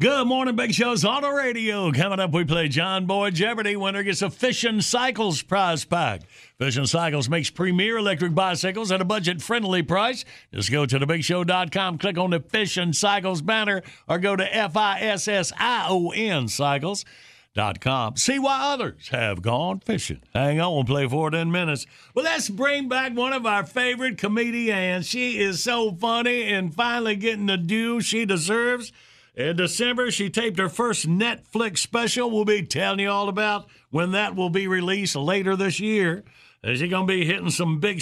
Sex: male